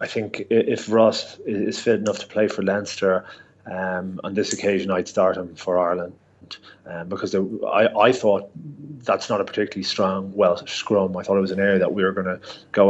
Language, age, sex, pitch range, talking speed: English, 30-49, male, 95-115 Hz, 205 wpm